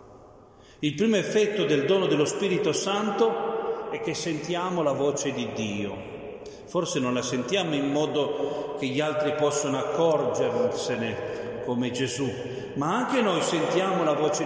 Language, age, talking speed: Italian, 40-59, 140 wpm